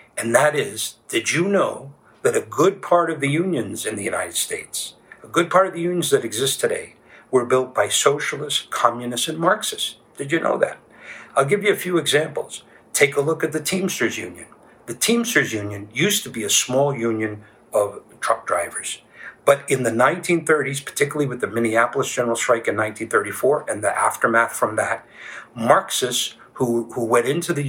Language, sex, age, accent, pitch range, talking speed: English, male, 50-69, American, 115-175 Hz, 180 wpm